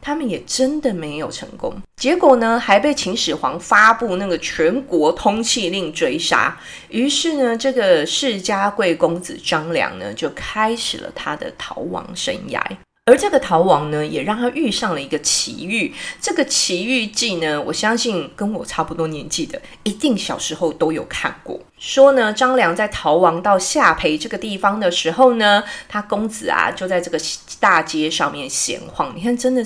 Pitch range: 175-265 Hz